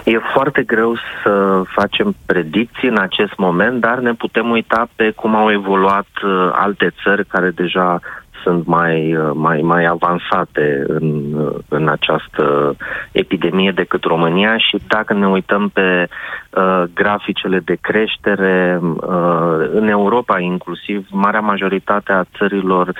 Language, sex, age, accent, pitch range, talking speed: Romanian, male, 30-49, native, 85-100 Hz, 130 wpm